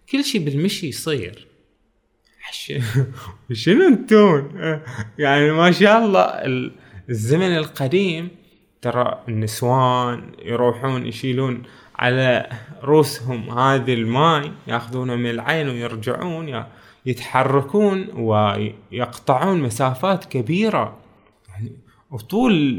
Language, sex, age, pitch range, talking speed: Arabic, male, 20-39, 120-180 Hz, 80 wpm